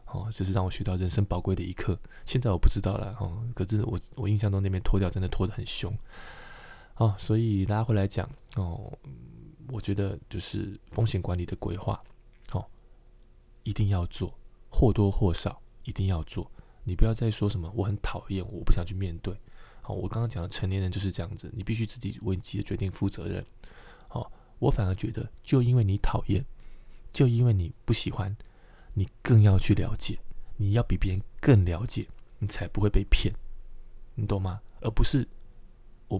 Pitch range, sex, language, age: 95-115 Hz, male, Chinese, 20-39